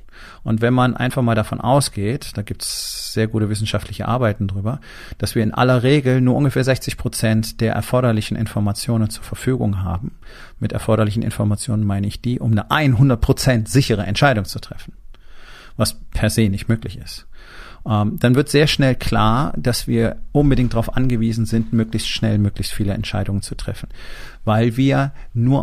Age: 40-59